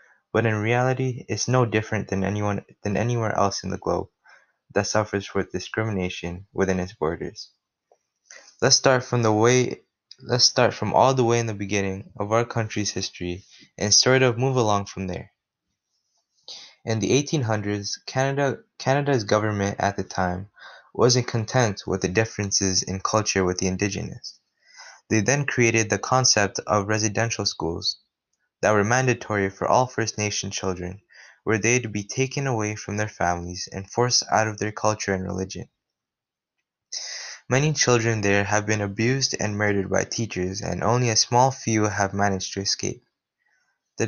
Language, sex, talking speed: English, male, 160 wpm